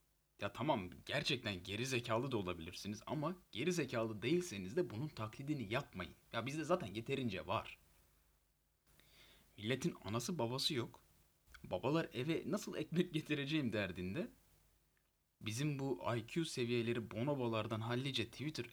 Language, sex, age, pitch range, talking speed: Turkish, male, 30-49, 105-145 Hz, 120 wpm